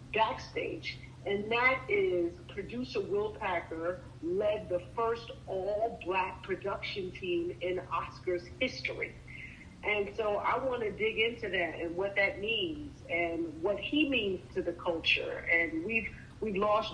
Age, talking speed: 50-69, 140 wpm